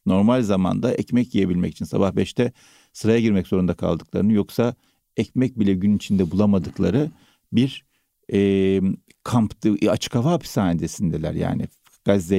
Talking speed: 120 wpm